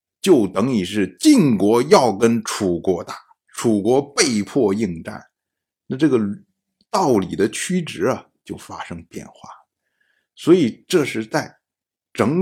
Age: 60-79